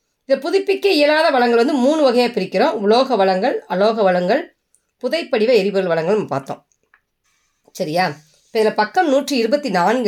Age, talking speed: 30-49, 135 wpm